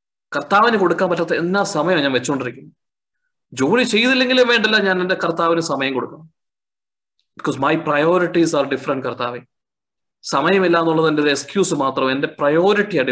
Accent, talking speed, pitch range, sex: native, 125 wpm, 140-175 Hz, male